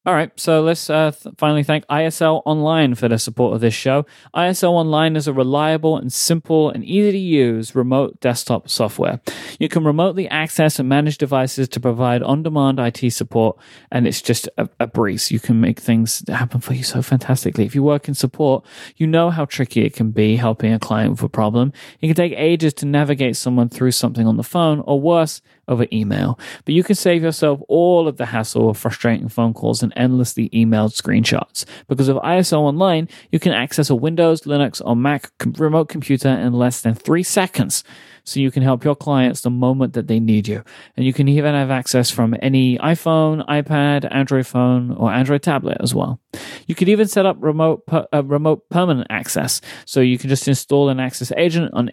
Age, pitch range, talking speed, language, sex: 30-49, 120-155 Hz, 200 wpm, English, male